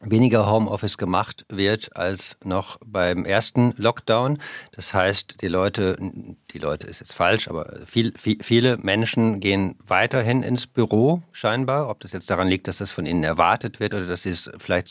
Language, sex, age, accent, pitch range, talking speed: German, male, 50-69, German, 95-125 Hz, 170 wpm